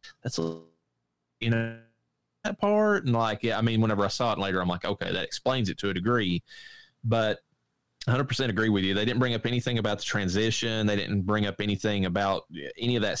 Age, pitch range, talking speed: 30-49, 100-115 Hz, 220 wpm